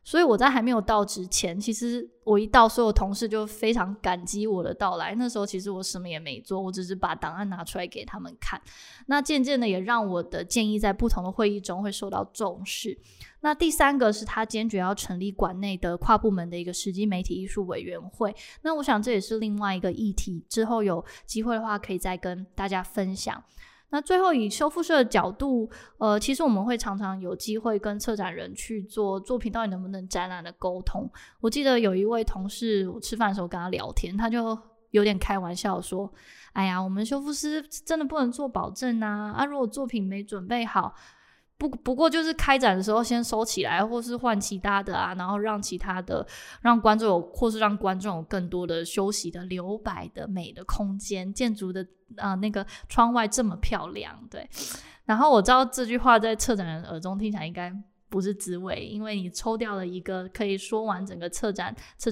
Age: 20-39